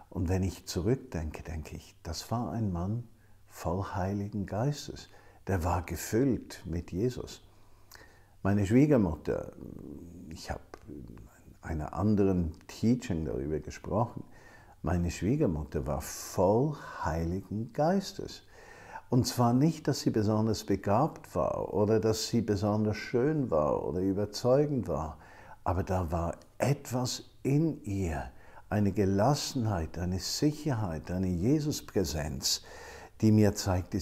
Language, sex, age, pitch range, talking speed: German, male, 50-69, 90-125 Hz, 115 wpm